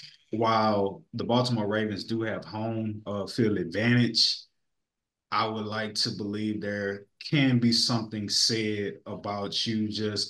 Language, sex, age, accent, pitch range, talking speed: English, male, 20-39, American, 105-120 Hz, 135 wpm